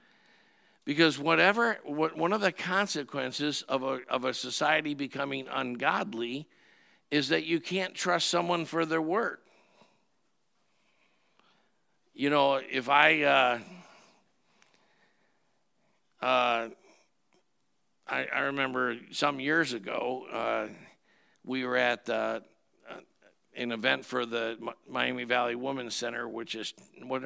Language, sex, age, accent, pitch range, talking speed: English, male, 50-69, American, 125-150 Hz, 110 wpm